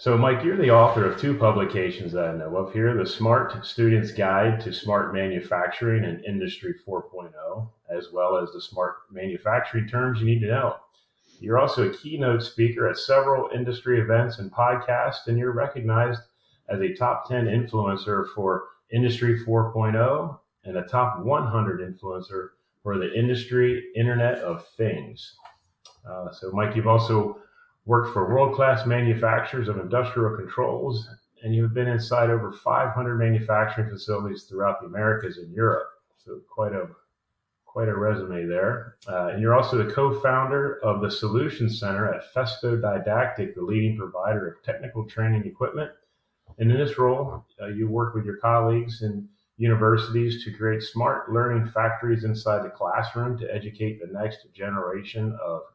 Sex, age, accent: male, 30-49, American